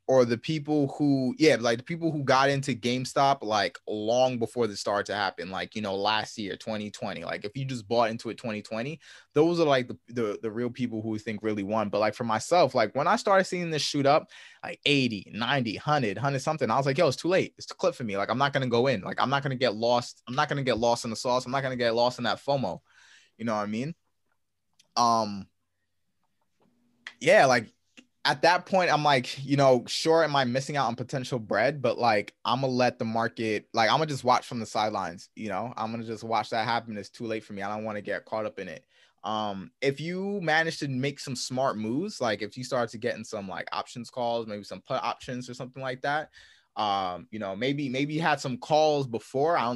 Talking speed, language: 250 wpm, English